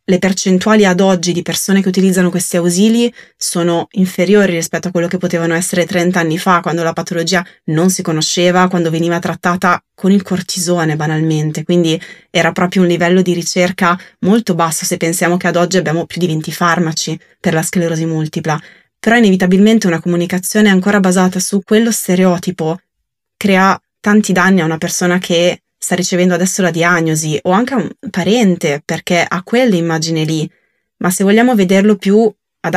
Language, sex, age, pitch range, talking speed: Italian, female, 20-39, 170-190 Hz, 170 wpm